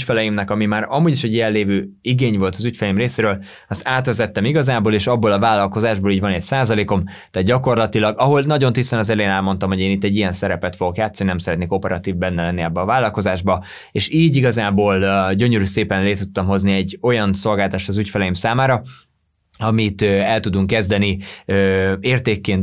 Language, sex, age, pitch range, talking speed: Hungarian, male, 20-39, 95-120 Hz, 185 wpm